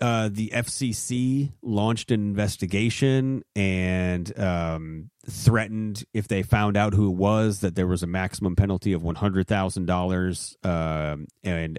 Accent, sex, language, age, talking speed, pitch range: American, male, English, 30-49, 125 wpm, 95-115 Hz